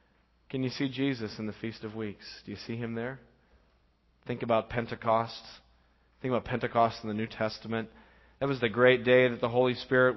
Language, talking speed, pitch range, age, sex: English, 195 wpm, 115-155 Hz, 40-59, male